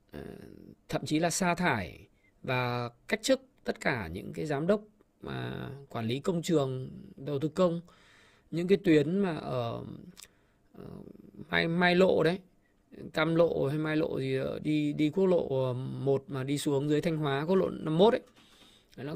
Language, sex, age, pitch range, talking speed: Vietnamese, male, 20-39, 140-190 Hz, 165 wpm